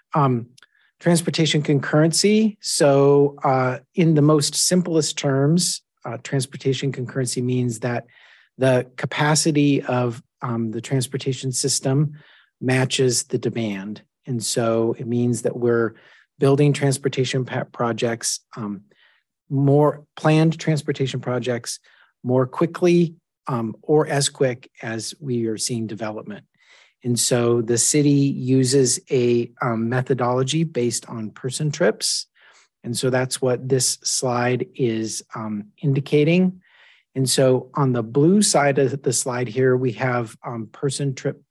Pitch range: 120-140 Hz